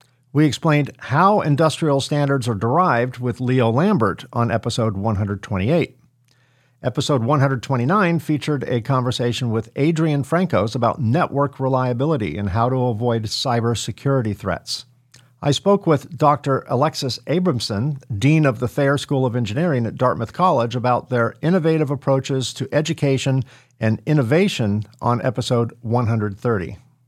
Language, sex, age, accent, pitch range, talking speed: English, male, 50-69, American, 120-150 Hz, 125 wpm